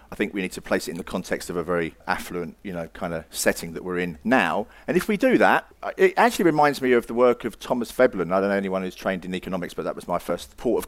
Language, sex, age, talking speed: English, male, 40-59, 290 wpm